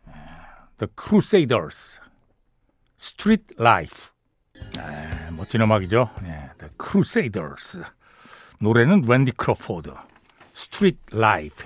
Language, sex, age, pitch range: Korean, male, 60-79, 115-180 Hz